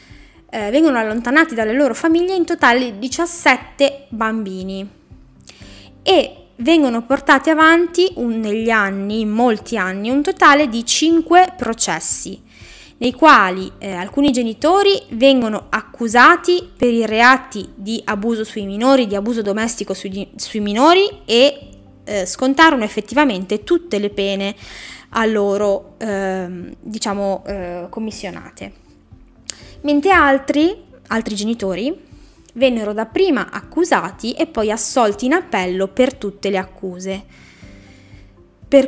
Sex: female